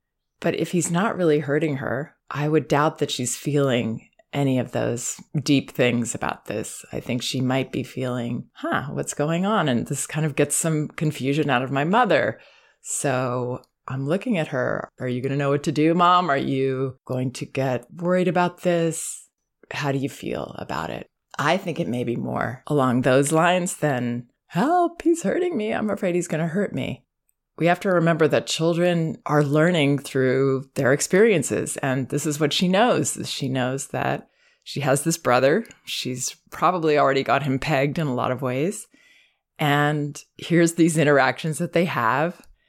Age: 20-39